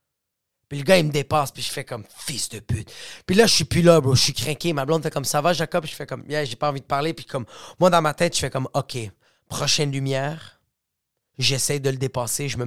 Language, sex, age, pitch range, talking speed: French, male, 30-49, 110-145 Hz, 275 wpm